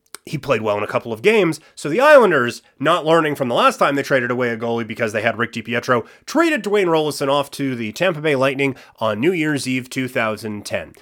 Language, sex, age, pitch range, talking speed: English, male, 30-49, 125-170 Hz, 225 wpm